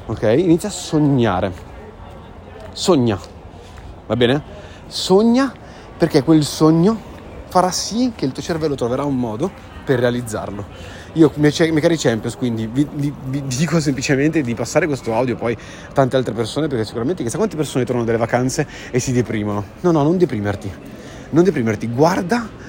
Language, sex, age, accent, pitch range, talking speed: Italian, male, 30-49, native, 115-160 Hz, 160 wpm